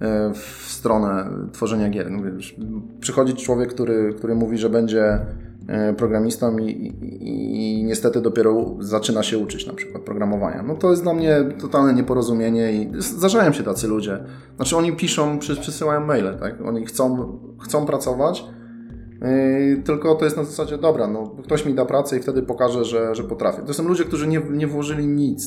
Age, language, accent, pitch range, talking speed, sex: 20-39, Polish, native, 110-135 Hz, 165 wpm, male